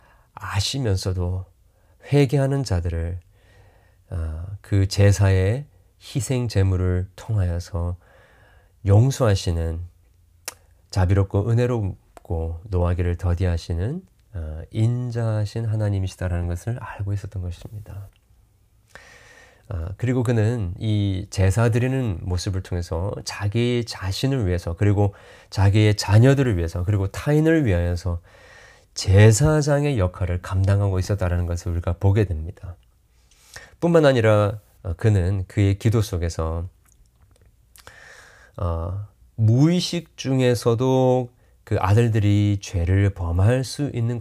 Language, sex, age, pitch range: Korean, male, 30-49, 90-115 Hz